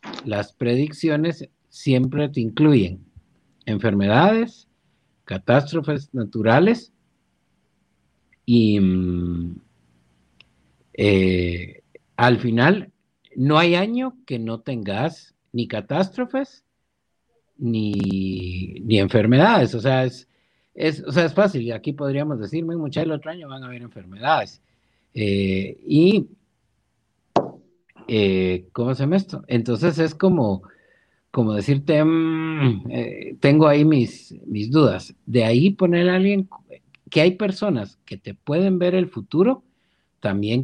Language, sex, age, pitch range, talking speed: Spanish, male, 50-69, 105-165 Hz, 115 wpm